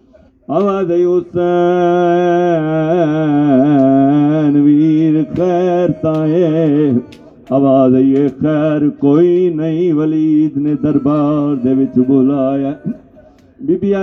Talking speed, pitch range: 70 wpm, 135-175 Hz